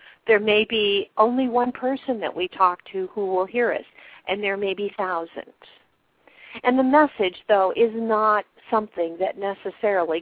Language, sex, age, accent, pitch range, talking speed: English, female, 50-69, American, 190-265 Hz, 165 wpm